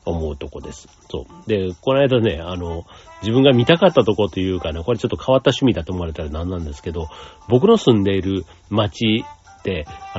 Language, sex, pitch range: Japanese, male, 85-130 Hz